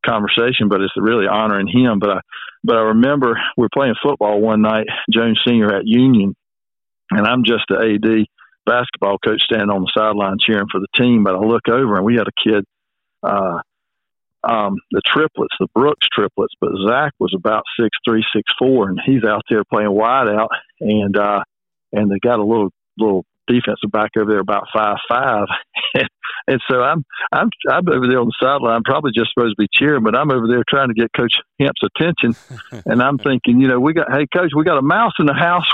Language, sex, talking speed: English, male, 210 wpm